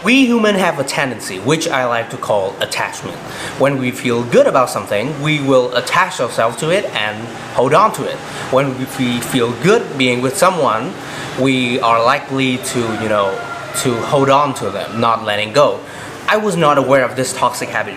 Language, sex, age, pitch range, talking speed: Vietnamese, male, 20-39, 120-145 Hz, 190 wpm